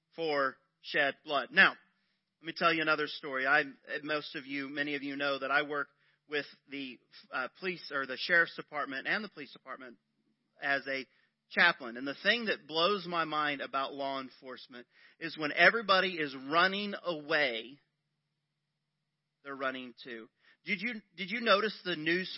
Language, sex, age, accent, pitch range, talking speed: English, male, 40-59, American, 140-170 Hz, 165 wpm